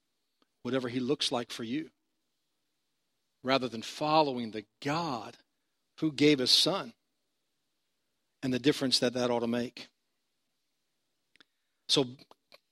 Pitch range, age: 130-195 Hz, 50-69